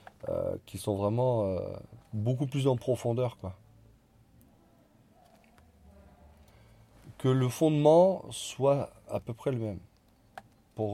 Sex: male